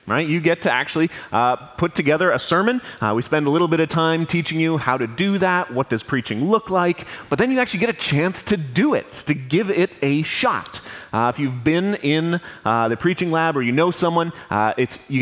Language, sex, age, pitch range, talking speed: English, male, 30-49, 130-175 Hz, 235 wpm